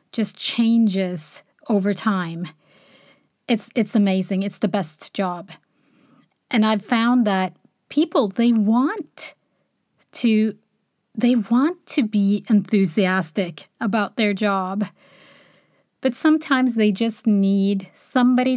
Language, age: English, 30-49